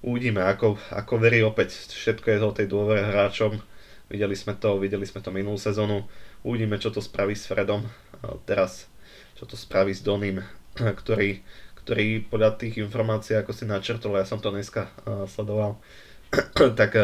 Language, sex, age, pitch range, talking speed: Slovak, male, 20-39, 100-110 Hz, 160 wpm